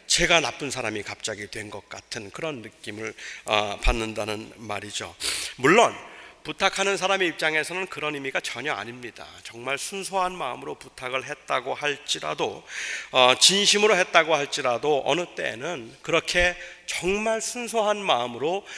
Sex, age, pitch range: male, 40-59, 130-190 Hz